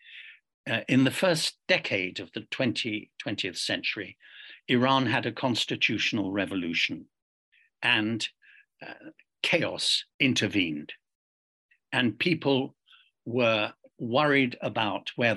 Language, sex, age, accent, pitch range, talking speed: English, male, 60-79, British, 105-125 Hz, 95 wpm